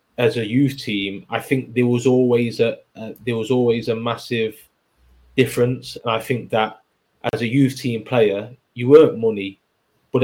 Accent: British